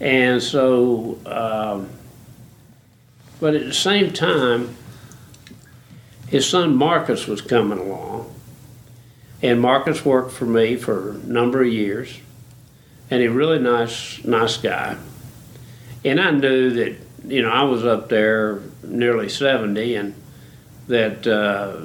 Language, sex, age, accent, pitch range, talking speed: English, male, 60-79, American, 115-140 Hz, 120 wpm